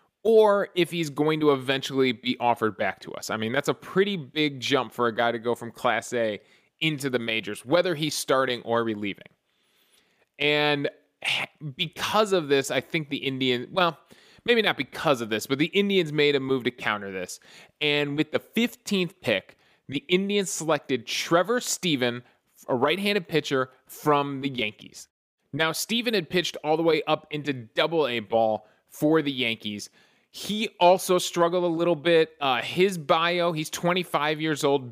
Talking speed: 170 wpm